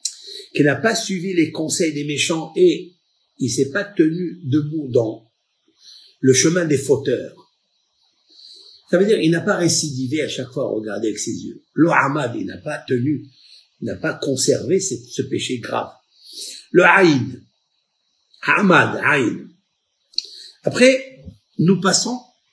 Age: 50-69